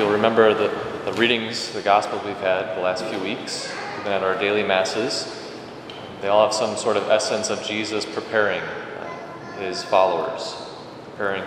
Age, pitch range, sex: 20-39, 100-110 Hz, male